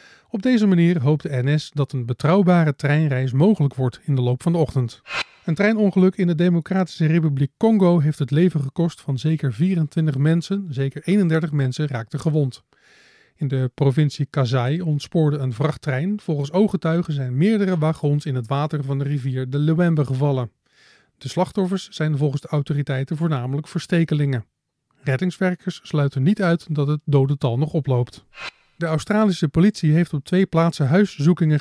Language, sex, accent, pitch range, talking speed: Dutch, male, Dutch, 140-175 Hz, 160 wpm